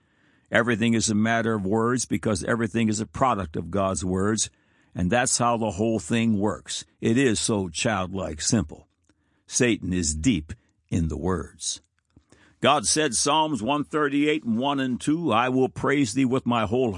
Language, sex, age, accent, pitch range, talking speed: English, male, 60-79, American, 100-145 Hz, 165 wpm